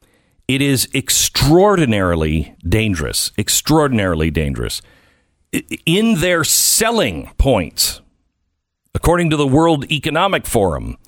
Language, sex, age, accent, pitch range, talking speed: English, male, 60-79, American, 95-150 Hz, 85 wpm